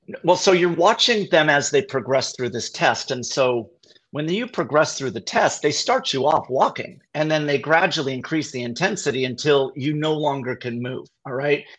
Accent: American